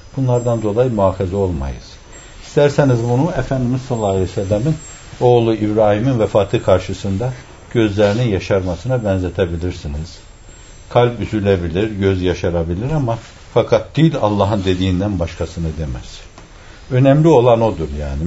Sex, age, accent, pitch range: male, 60-79, native, 95-135 Hz